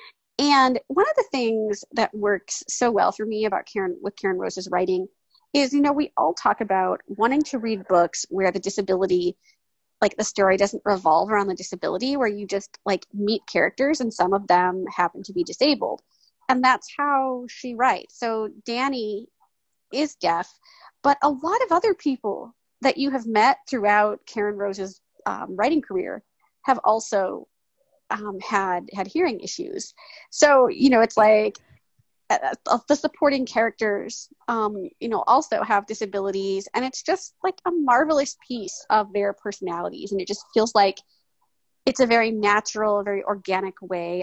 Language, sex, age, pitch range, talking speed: English, female, 30-49, 195-270 Hz, 165 wpm